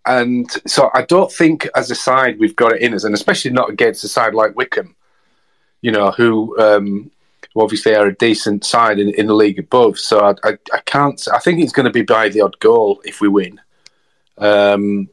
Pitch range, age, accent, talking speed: 105-145 Hz, 30-49, British, 215 wpm